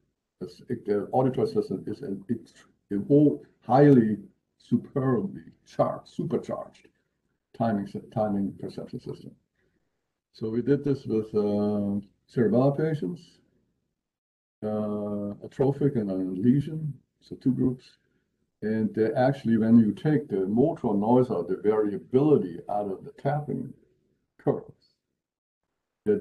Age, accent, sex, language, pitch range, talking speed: 60-79, American, male, English, 100-125 Hz, 115 wpm